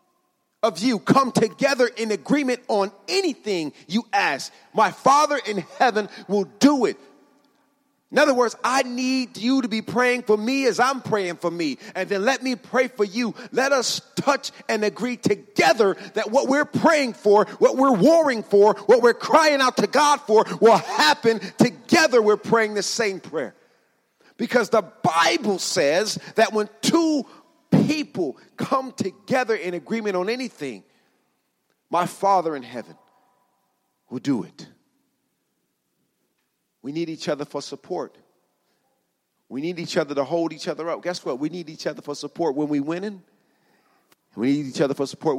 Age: 40-59